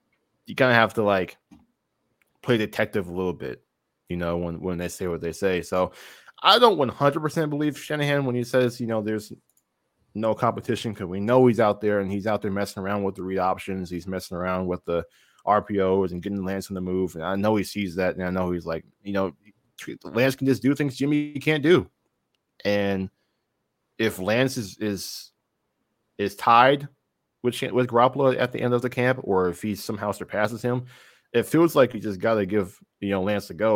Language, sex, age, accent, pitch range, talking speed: English, male, 20-39, American, 95-120 Hz, 210 wpm